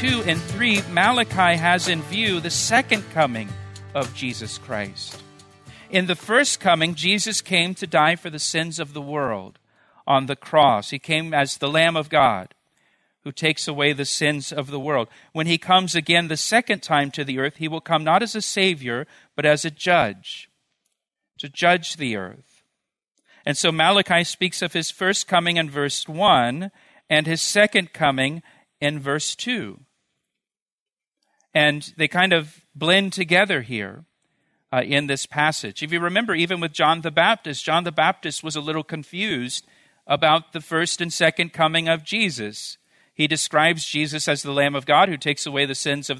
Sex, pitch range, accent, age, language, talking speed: male, 145-185 Hz, American, 50-69, English, 175 wpm